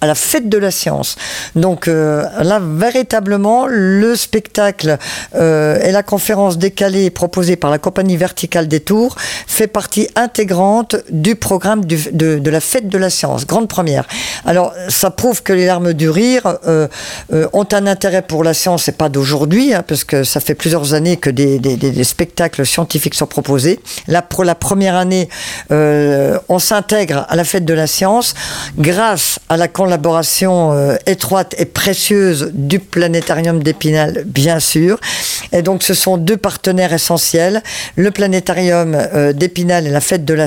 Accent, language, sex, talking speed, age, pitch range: French, French, female, 170 wpm, 50-69, 155-195 Hz